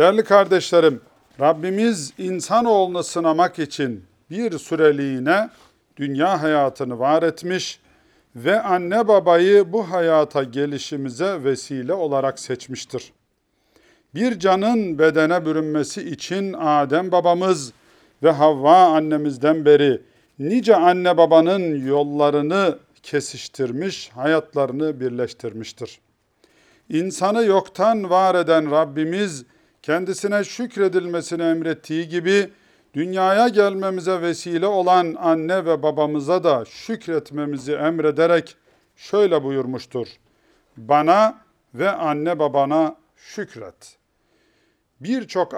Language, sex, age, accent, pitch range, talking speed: Turkish, male, 40-59, native, 145-190 Hz, 85 wpm